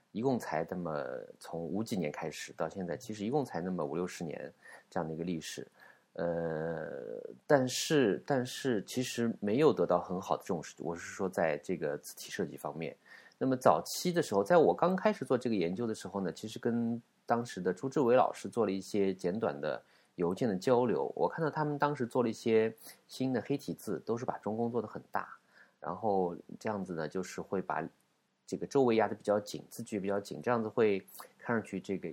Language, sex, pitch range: Chinese, male, 90-125 Hz